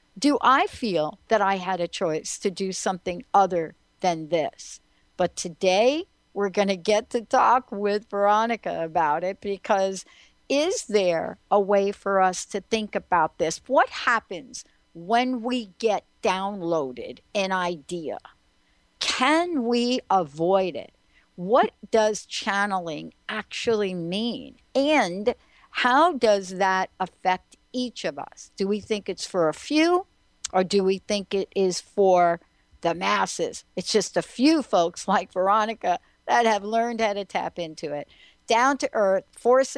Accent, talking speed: American, 145 wpm